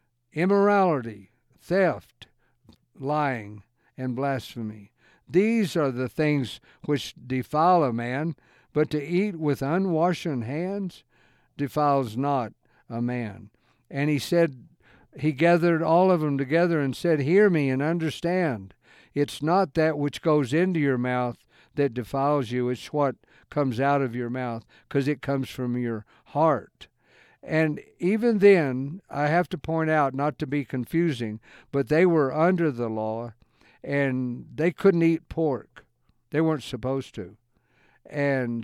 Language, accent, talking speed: English, American, 140 wpm